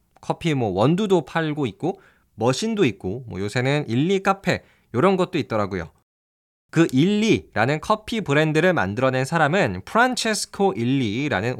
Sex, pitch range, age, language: male, 120-190 Hz, 20-39, Korean